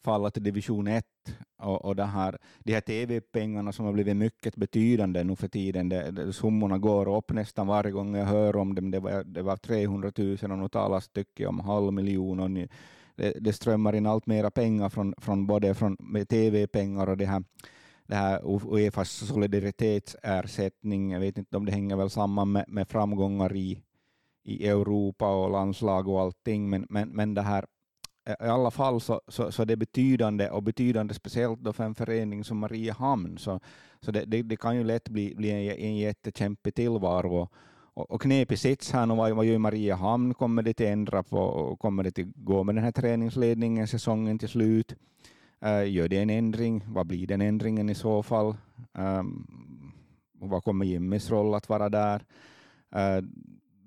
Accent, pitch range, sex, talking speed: Finnish, 100-115 Hz, male, 190 wpm